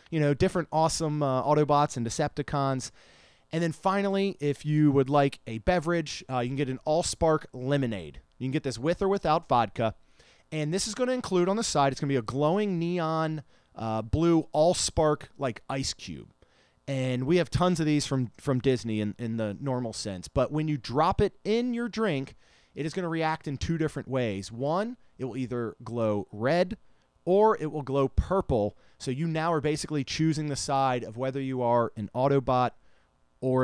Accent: American